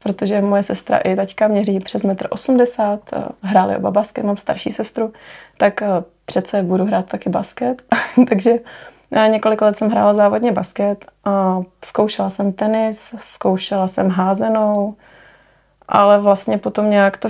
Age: 20-39